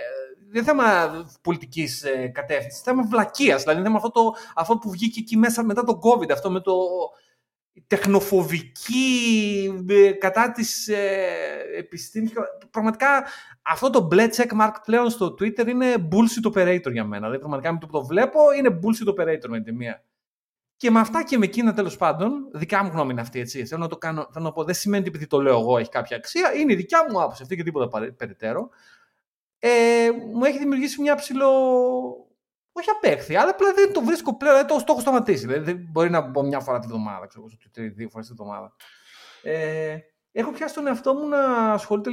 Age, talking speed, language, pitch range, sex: 30-49, 180 wpm, Greek, 160-245 Hz, male